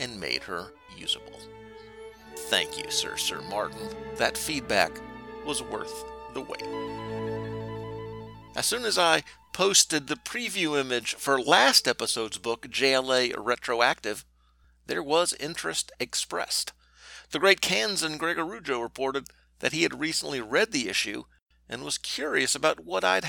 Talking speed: 130 wpm